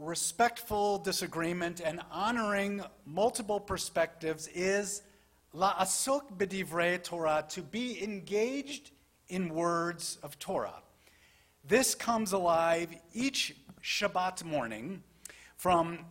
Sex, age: male, 50-69